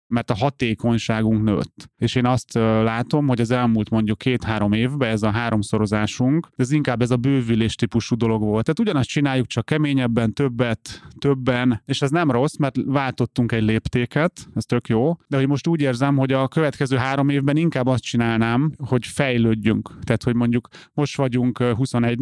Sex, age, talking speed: male, 30-49, 175 wpm